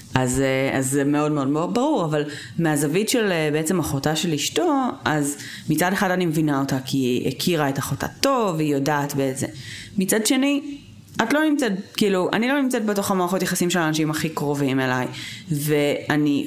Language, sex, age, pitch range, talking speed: Hebrew, female, 30-49, 145-195 Hz, 170 wpm